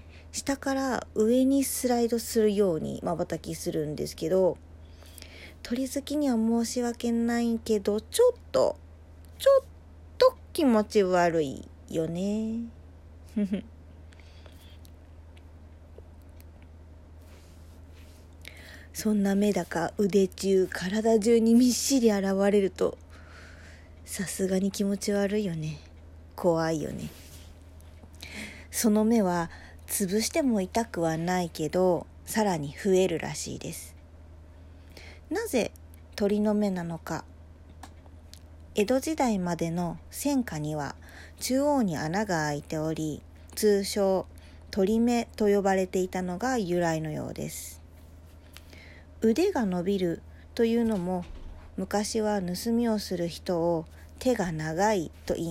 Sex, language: female, Japanese